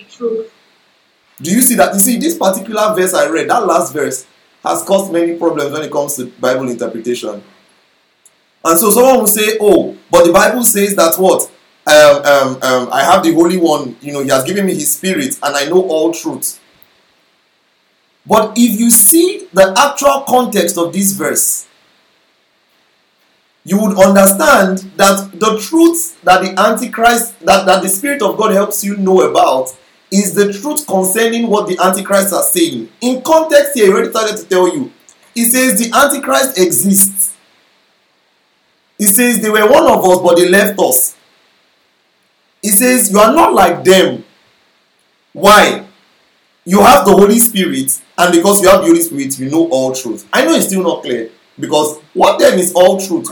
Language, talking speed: English, 175 wpm